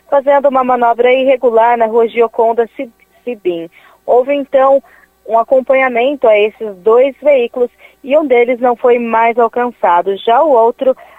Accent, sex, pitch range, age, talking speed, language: Brazilian, female, 210-255 Hz, 20-39, 140 wpm, Portuguese